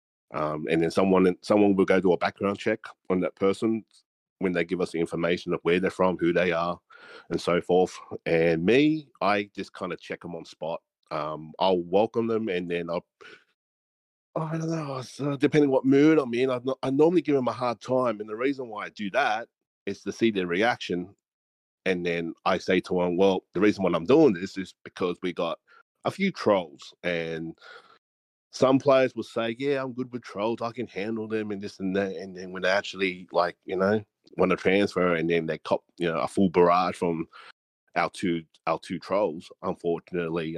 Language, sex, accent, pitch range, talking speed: English, male, Australian, 85-115 Hz, 205 wpm